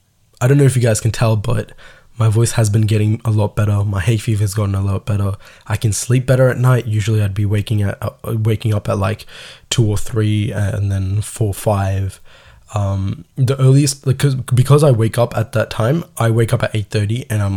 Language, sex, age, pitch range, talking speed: Tamil, male, 10-29, 105-125 Hz, 220 wpm